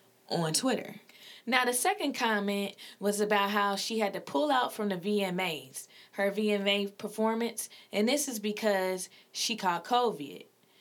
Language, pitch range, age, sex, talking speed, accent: English, 185-220 Hz, 20-39, female, 150 wpm, American